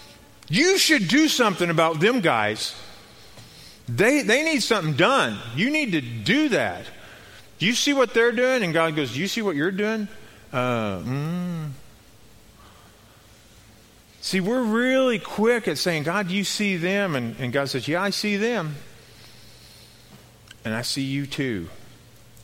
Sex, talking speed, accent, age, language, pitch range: male, 155 wpm, American, 40-59, English, 110-175 Hz